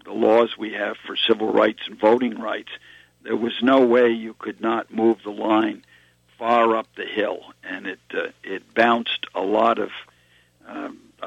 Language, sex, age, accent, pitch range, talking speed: English, male, 60-79, American, 105-120 Hz, 175 wpm